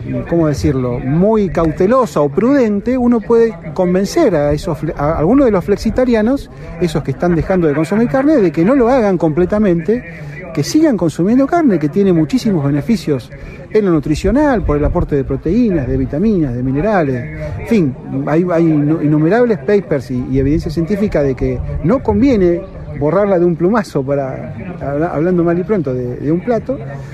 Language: Spanish